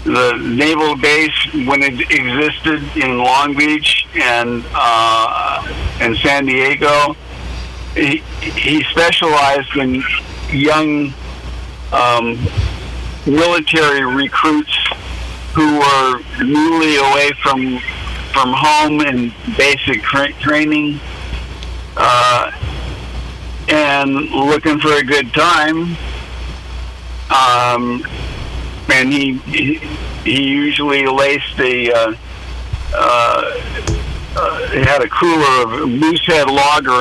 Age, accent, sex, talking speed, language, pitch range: 60-79, American, male, 85 wpm, English, 115-150 Hz